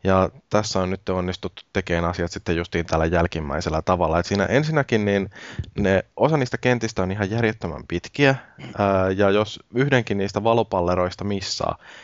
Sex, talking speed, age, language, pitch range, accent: male, 145 wpm, 20-39, Finnish, 90-105 Hz, native